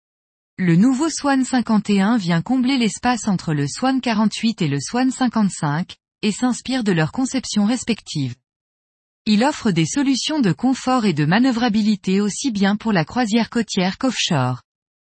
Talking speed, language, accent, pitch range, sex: 145 wpm, French, French, 180-245 Hz, female